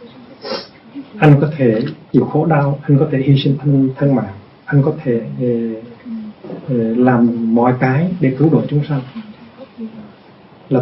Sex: male